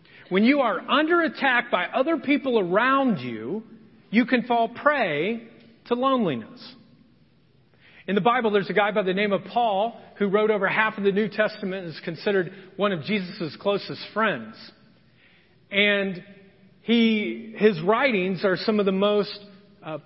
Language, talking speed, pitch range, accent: English, 160 wpm, 195-275 Hz, American